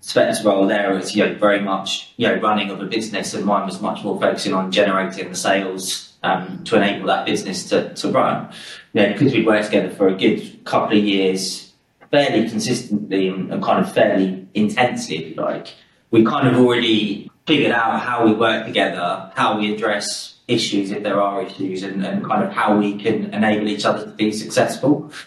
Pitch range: 95-115 Hz